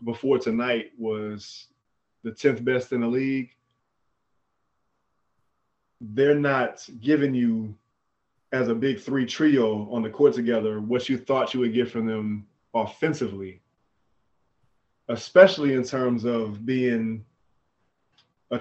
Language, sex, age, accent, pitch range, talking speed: English, male, 20-39, American, 115-140 Hz, 120 wpm